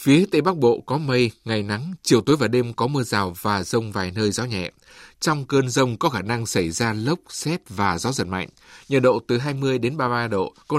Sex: male